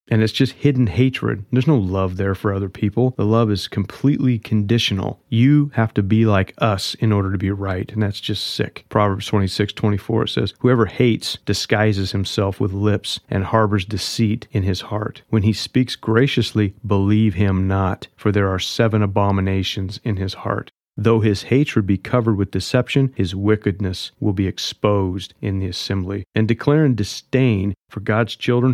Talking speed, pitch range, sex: 180 wpm, 105-135 Hz, male